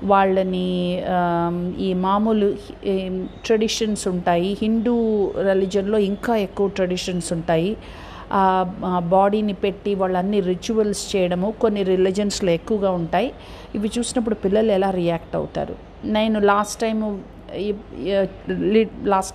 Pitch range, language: 185-225 Hz, Telugu